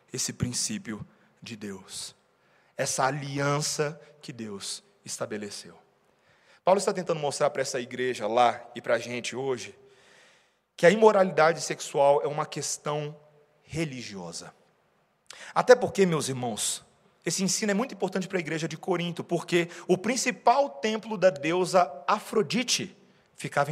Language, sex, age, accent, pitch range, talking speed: Portuguese, male, 40-59, Brazilian, 150-200 Hz, 130 wpm